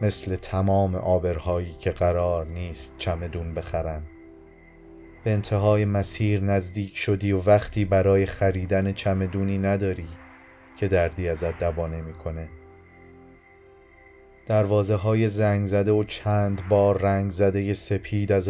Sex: male